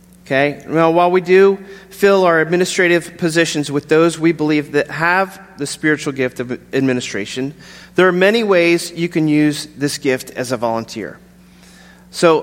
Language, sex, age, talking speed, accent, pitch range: English, male, 40-59, 150 wpm, American, 150-180 Hz